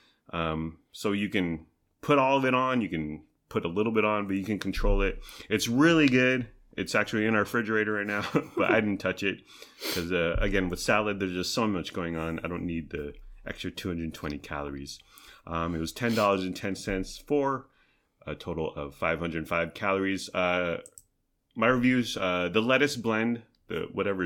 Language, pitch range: English, 90-120 Hz